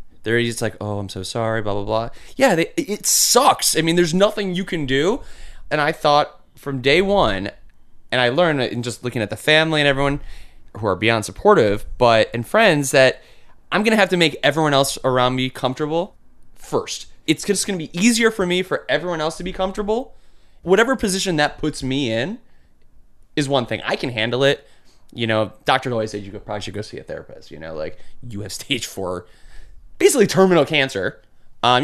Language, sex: English, male